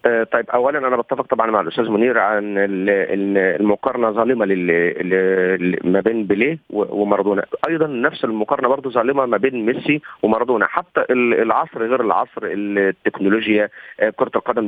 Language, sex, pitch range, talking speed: Arabic, male, 105-145 Hz, 130 wpm